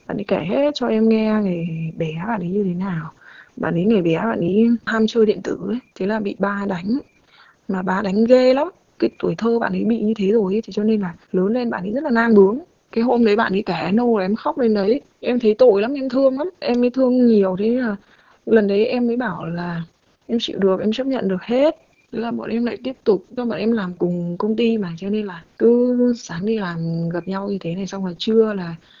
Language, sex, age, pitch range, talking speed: Vietnamese, female, 20-39, 185-235 Hz, 260 wpm